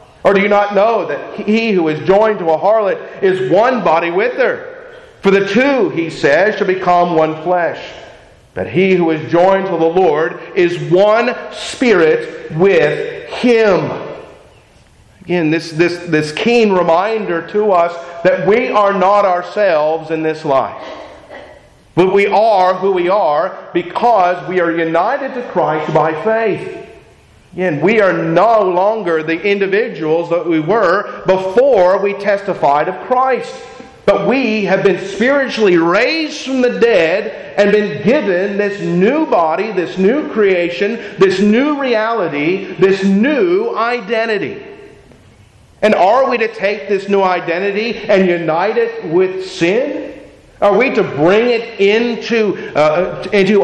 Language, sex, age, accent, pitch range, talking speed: English, male, 50-69, American, 175-235 Hz, 145 wpm